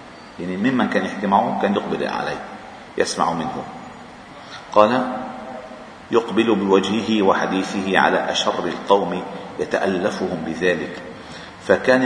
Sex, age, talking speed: male, 50-69, 95 wpm